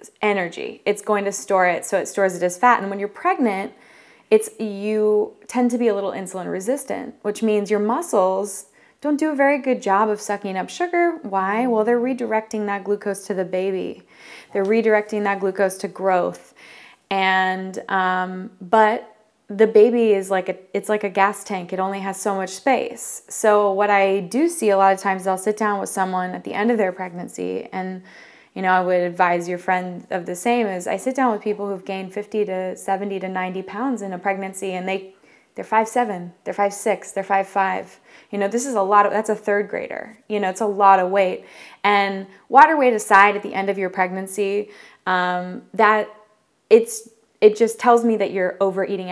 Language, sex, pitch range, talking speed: English, female, 190-215 Hz, 205 wpm